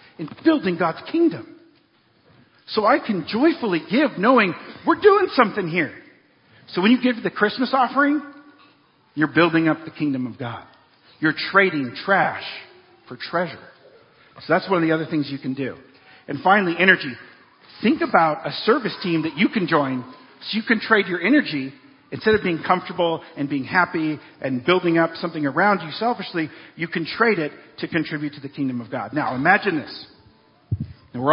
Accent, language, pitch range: American, English, 145-210 Hz